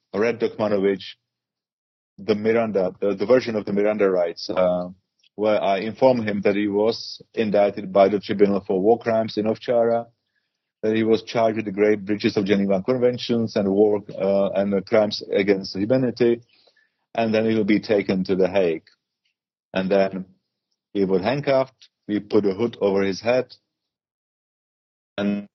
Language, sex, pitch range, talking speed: English, male, 100-115 Hz, 160 wpm